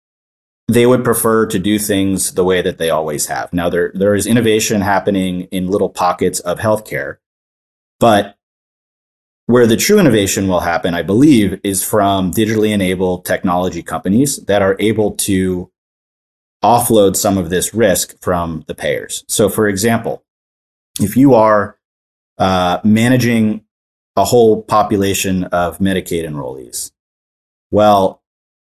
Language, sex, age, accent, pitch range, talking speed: English, male, 30-49, American, 90-110 Hz, 135 wpm